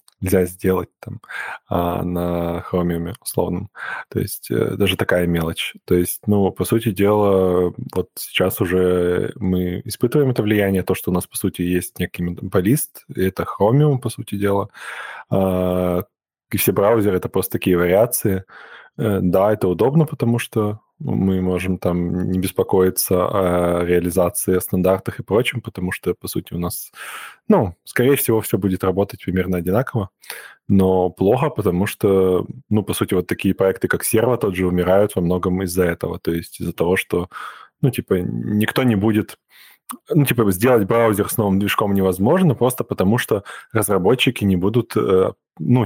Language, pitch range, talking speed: Russian, 90-110 Hz, 155 wpm